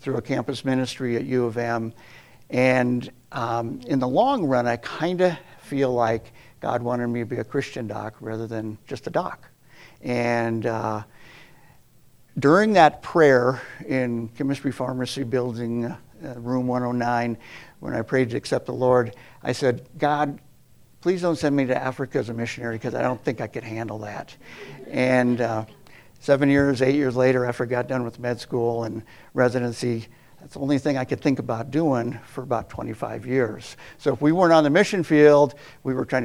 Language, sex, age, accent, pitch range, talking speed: English, male, 60-79, American, 115-140 Hz, 185 wpm